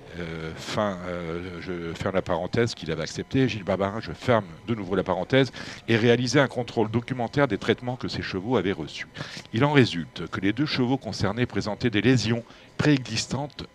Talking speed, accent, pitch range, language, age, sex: 185 wpm, French, 90-125 Hz, French, 50-69, male